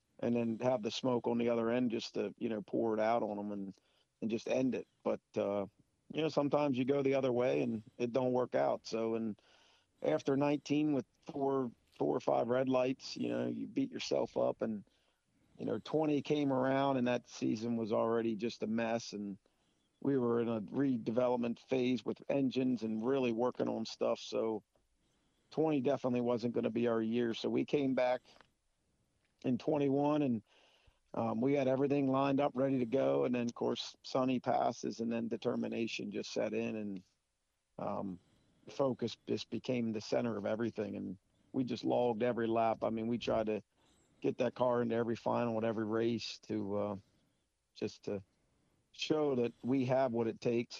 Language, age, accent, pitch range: English, 50-69, American, 110-130 Hz